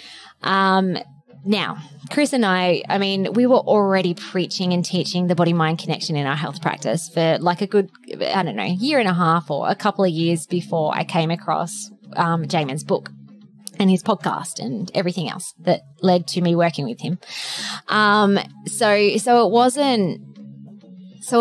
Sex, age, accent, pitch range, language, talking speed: female, 20-39, Australian, 165-205 Hz, English, 175 wpm